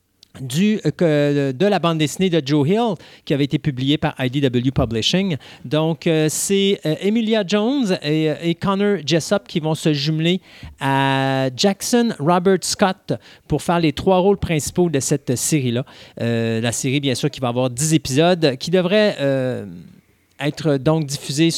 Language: French